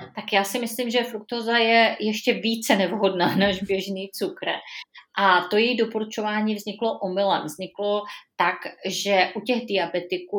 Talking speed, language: 145 wpm, Czech